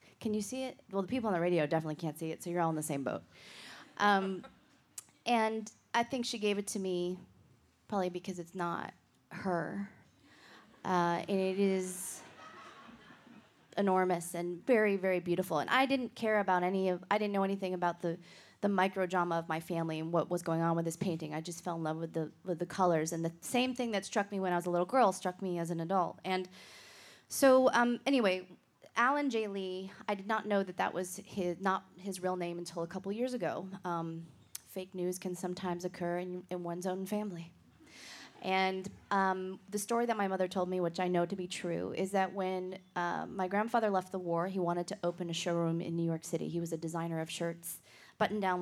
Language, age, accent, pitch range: English, 20-39, American, 175-200 Hz